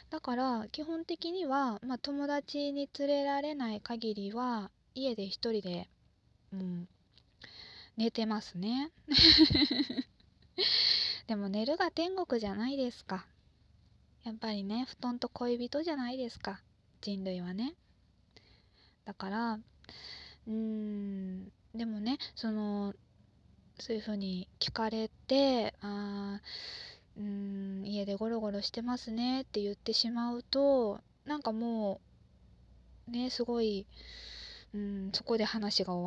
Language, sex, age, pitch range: Japanese, female, 20-39, 195-260 Hz